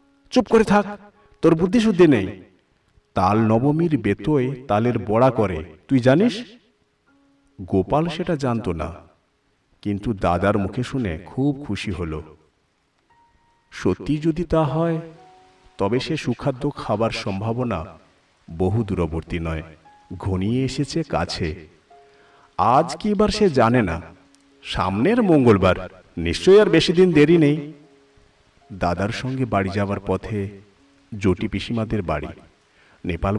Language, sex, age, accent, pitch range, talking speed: Bengali, male, 50-69, native, 95-150 Hz, 105 wpm